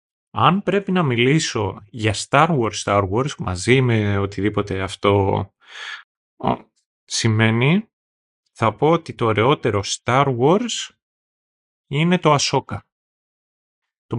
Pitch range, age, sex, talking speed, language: 100-135 Hz, 30-49, male, 105 wpm, Greek